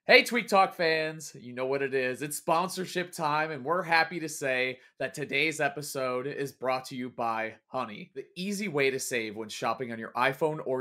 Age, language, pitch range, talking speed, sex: 30-49, English, 130-165 Hz, 205 wpm, male